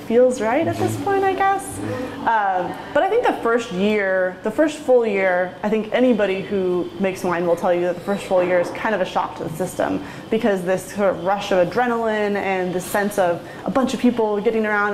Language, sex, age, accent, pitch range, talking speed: English, female, 20-39, American, 185-230 Hz, 230 wpm